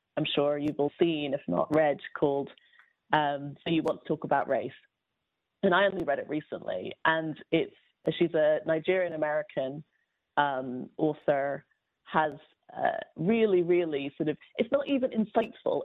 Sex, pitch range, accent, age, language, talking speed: female, 155-205 Hz, British, 30-49, English, 150 wpm